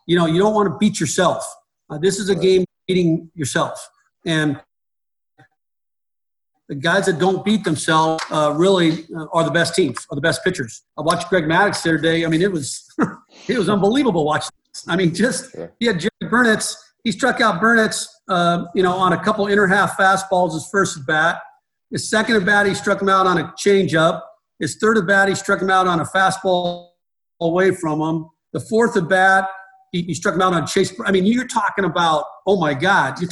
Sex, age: male, 50-69